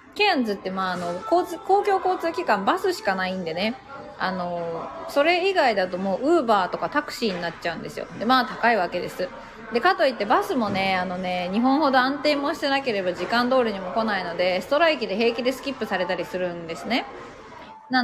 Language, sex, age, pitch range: Japanese, female, 20-39, 195-275 Hz